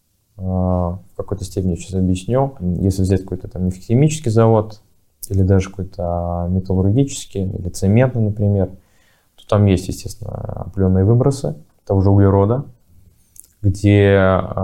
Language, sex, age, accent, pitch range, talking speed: Russian, male, 20-39, native, 90-105 Hz, 115 wpm